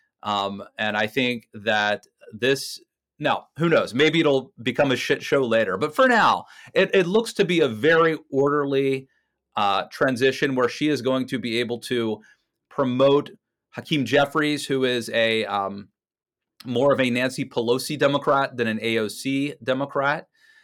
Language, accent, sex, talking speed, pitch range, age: English, American, male, 155 wpm, 125-180 Hz, 30-49